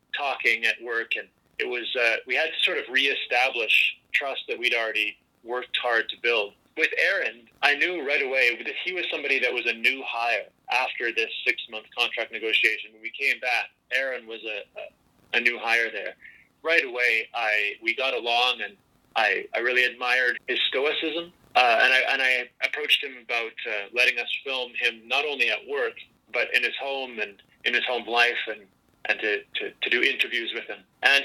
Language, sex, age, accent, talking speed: English, male, 30-49, American, 200 wpm